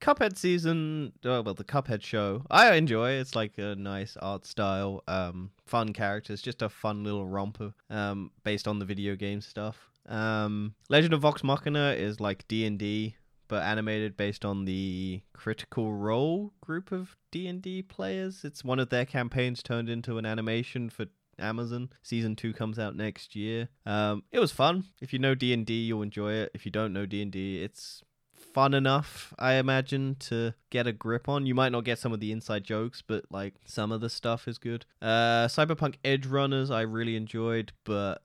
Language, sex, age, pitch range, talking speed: English, male, 20-39, 105-130 Hz, 180 wpm